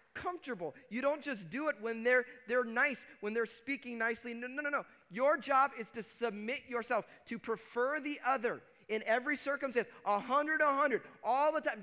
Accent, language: American, English